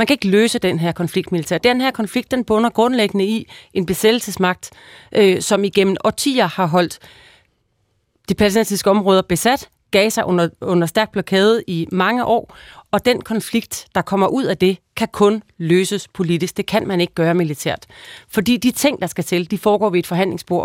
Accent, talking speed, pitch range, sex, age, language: native, 185 wpm, 175-220 Hz, female, 30-49, Danish